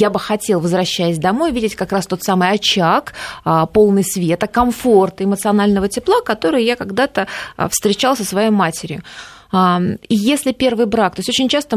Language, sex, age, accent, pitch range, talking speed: Russian, female, 20-39, native, 180-235 Hz, 160 wpm